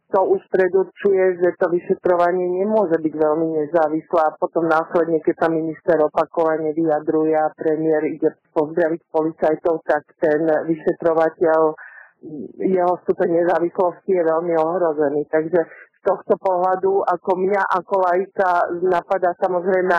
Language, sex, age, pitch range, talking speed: Slovak, male, 50-69, 165-195 Hz, 125 wpm